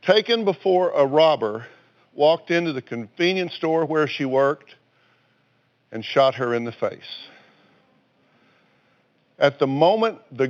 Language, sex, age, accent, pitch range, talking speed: English, male, 60-79, American, 115-140 Hz, 125 wpm